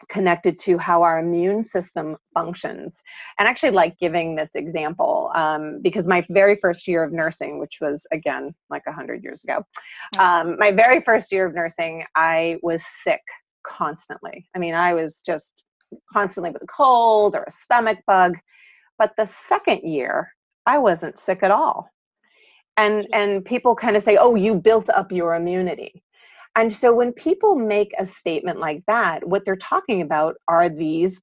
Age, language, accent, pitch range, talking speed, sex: 30-49, English, American, 165-215 Hz, 175 wpm, female